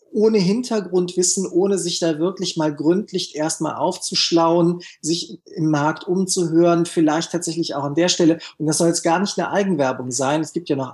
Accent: German